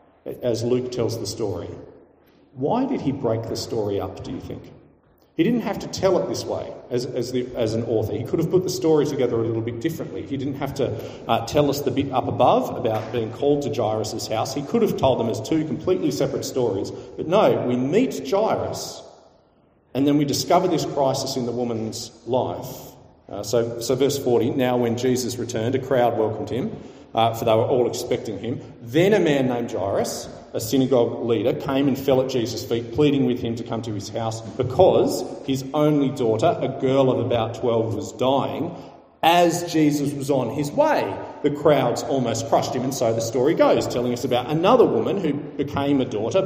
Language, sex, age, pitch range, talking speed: English, male, 40-59, 115-140 Hz, 205 wpm